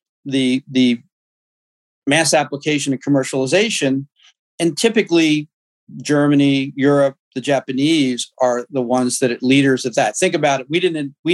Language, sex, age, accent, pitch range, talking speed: English, male, 40-59, American, 125-155 Hz, 145 wpm